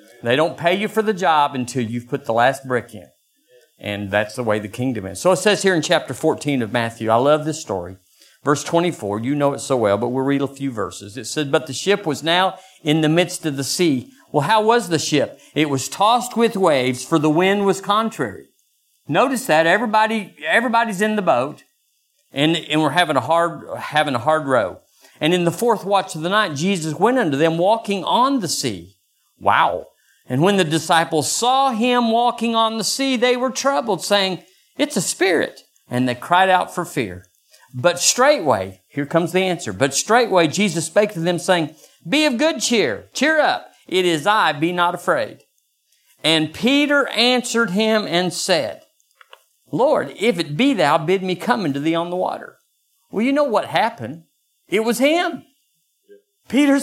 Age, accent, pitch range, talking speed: 50-69, American, 145-235 Hz, 195 wpm